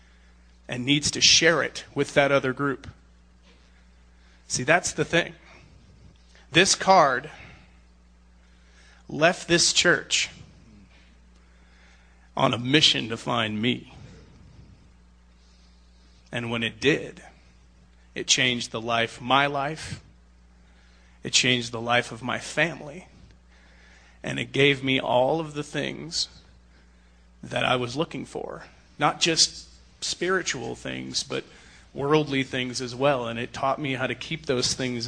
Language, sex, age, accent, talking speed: English, male, 30-49, American, 125 wpm